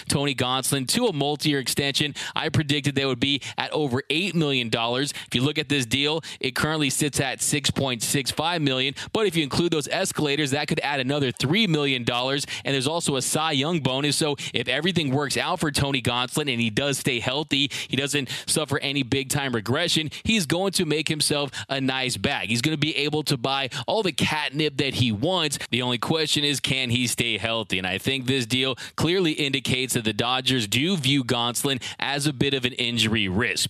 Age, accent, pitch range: 20-39, American, 125-145 Hz